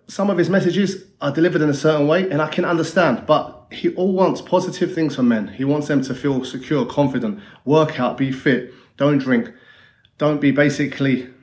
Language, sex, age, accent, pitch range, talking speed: English, male, 30-49, British, 125-160 Hz, 200 wpm